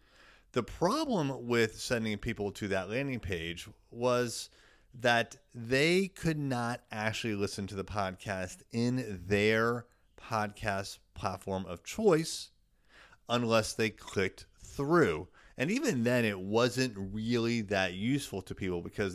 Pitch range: 95-125 Hz